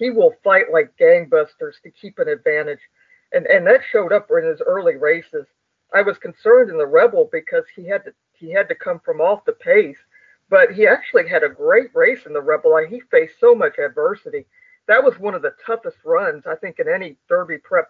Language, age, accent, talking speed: English, 50-69, American, 220 wpm